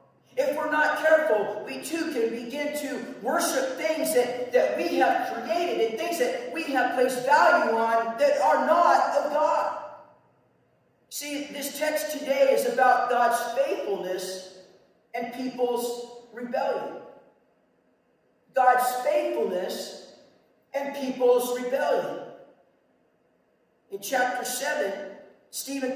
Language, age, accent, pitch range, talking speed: English, 50-69, American, 250-295 Hz, 115 wpm